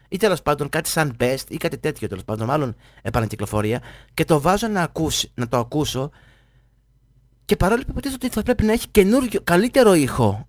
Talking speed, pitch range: 175 wpm, 130-200 Hz